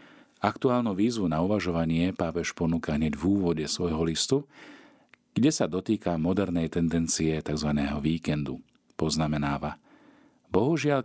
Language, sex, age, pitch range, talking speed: Slovak, male, 40-59, 80-110 Hz, 110 wpm